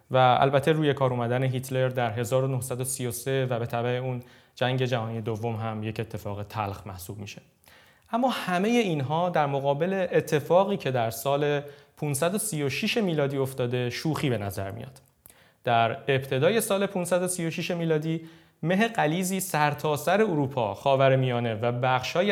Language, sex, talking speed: Persian, male, 140 wpm